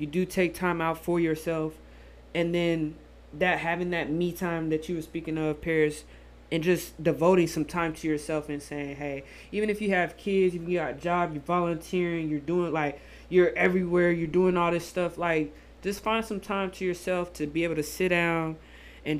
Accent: American